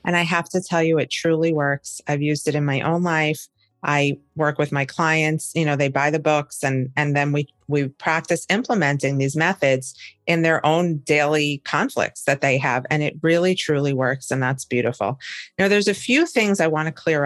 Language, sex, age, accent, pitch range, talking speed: English, female, 40-59, American, 135-170 Hz, 210 wpm